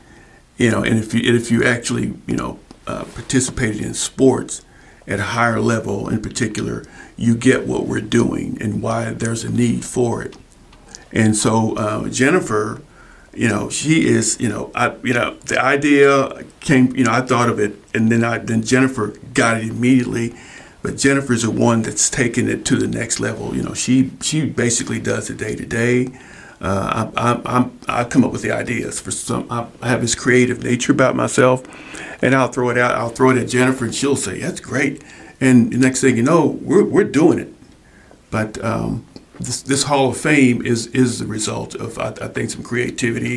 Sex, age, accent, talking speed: male, 50-69, American, 200 wpm